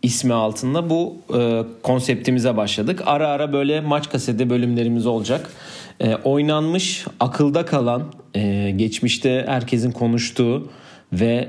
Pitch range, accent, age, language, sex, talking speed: 110-145 Hz, native, 40-59, Turkish, male, 115 wpm